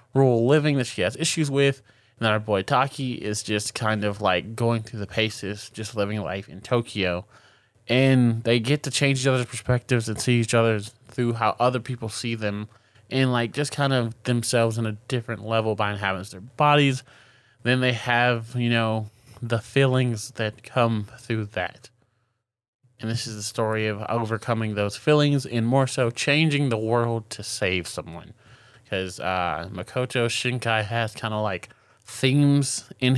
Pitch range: 110-125 Hz